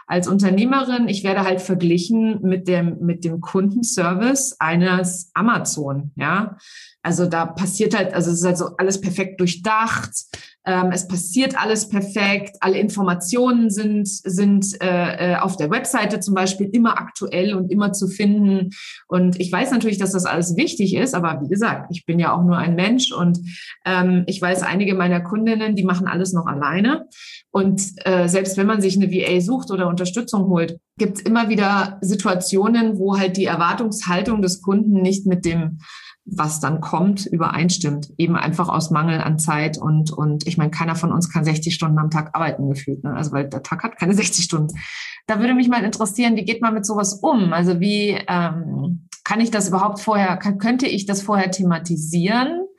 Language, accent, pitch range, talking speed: German, German, 175-210 Hz, 185 wpm